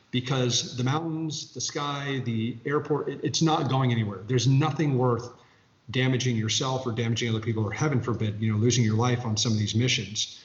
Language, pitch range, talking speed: English, 115-130 Hz, 190 wpm